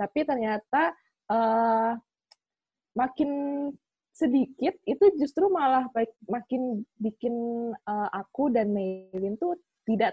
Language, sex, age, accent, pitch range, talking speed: Indonesian, female, 20-39, native, 190-230 Hz, 100 wpm